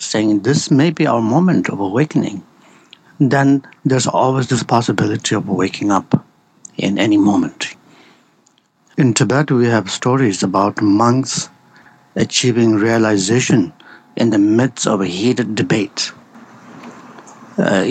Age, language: 60-79, English